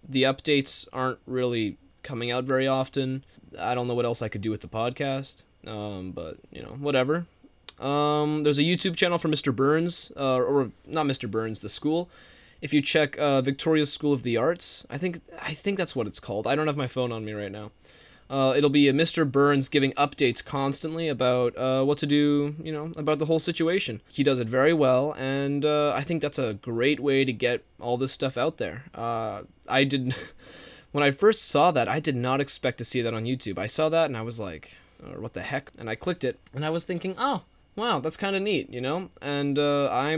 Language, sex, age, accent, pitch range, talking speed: English, male, 20-39, American, 125-160 Hz, 225 wpm